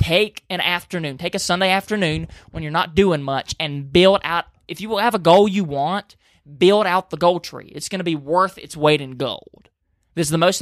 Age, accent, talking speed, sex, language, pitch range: 20-39, American, 230 wpm, male, English, 140-180 Hz